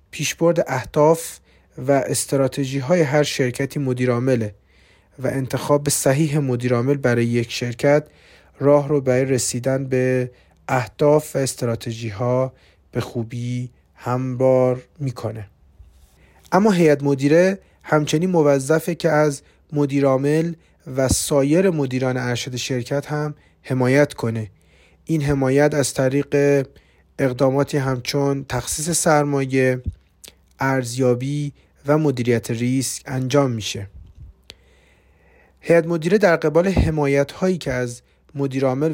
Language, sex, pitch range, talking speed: Persian, male, 125-150 Hz, 100 wpm